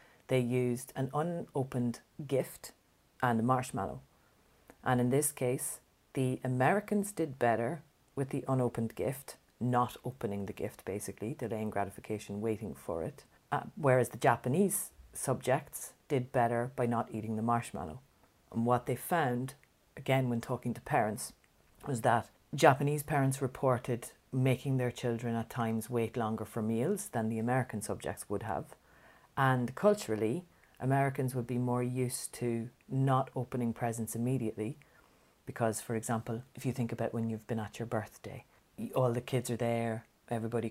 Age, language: 40-59, English